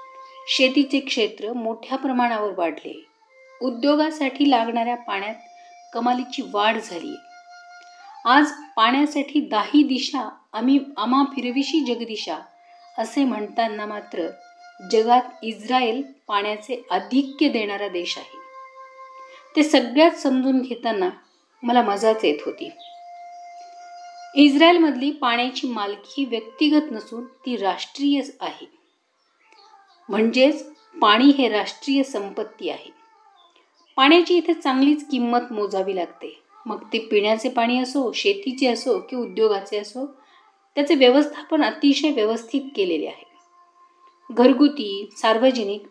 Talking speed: 100 wpm